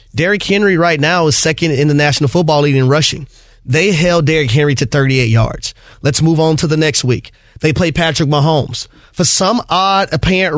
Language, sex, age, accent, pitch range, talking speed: English, male, 30-49, American, 135-200 Hz, 200 wpm